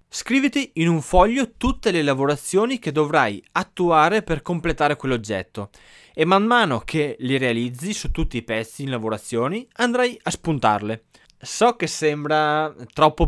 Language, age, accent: Italian, 20-39, native